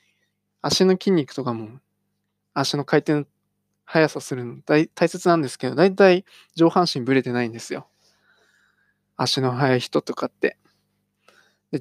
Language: Japanese